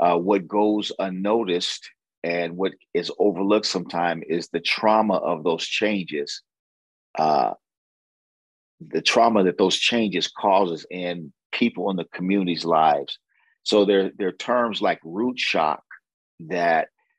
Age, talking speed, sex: 40-59, 135 wpm, male